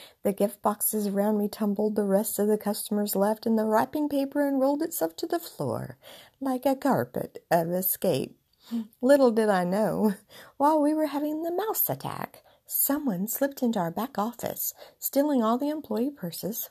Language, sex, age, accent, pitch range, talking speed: English, female, 50-69, American, 200-290 Hz, 170 wpm